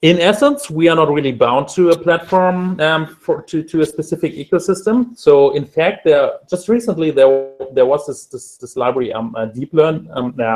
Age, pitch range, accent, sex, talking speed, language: 30-49, 120-175 Hz, German, male, 205 wpm, English